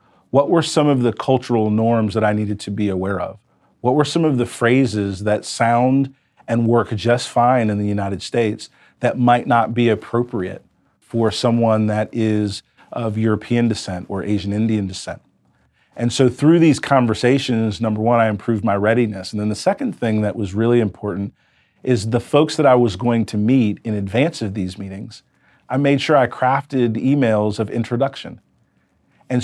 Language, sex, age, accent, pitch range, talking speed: English, male, 40-59, American, 105-125 Hz, 180 wpm